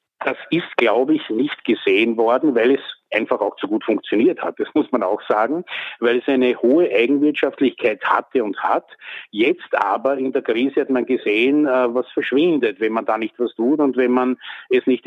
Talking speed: 195 wpm